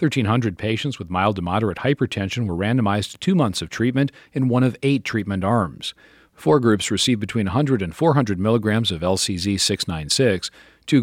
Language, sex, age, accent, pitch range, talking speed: English, male, 40-59, American, 95-125 Hz, 170 wpm